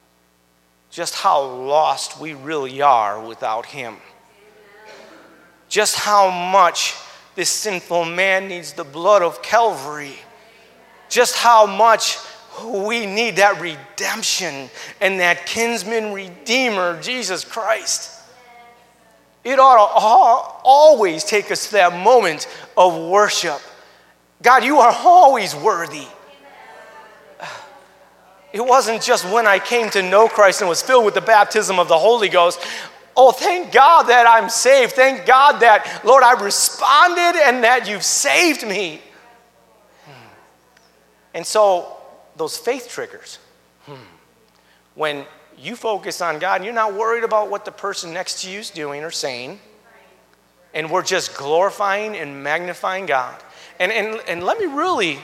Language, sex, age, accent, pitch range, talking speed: English, male, 30-49, American, 175-235 Hz, 135 wpm